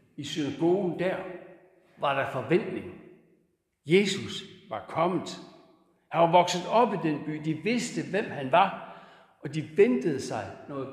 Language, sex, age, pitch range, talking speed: Danish, male, 60-79, 145-195 Hz, 145 wpm